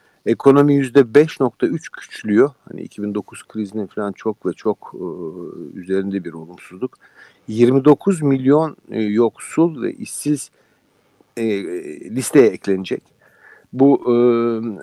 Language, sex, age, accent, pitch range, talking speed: Turkish, male, 50-69, native, 110-135 Hz, 90 wpm